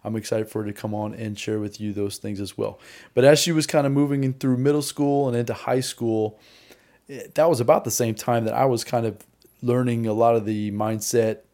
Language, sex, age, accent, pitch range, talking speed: English, male, 30-49, American, 110-125 Hz, 240 wpm